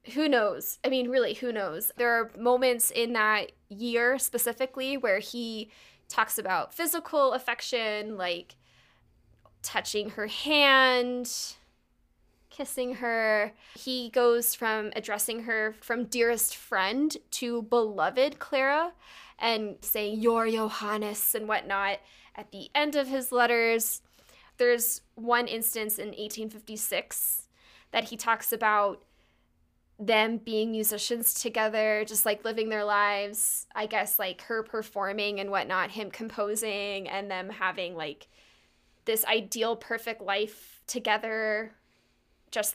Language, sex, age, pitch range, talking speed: English, female, 20-39, 215-265 Hz, 120 wpm